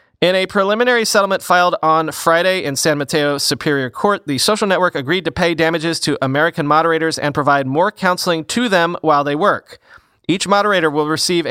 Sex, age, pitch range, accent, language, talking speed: male, 30-49, 145-180 Hz, American, English, 185 wpm